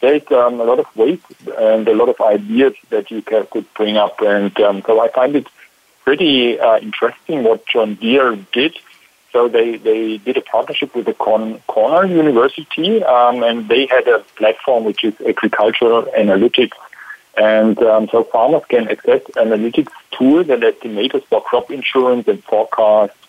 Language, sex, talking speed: English, male, 160 wpm